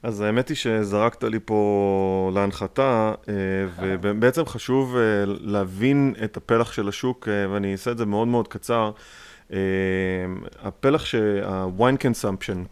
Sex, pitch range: male, 100-125 Hz